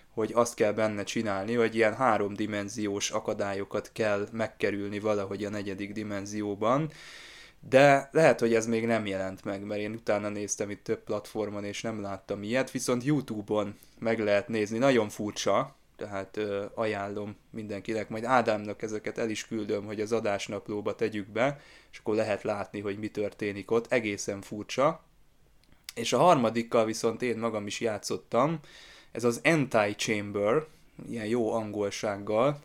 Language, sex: Hungarian, male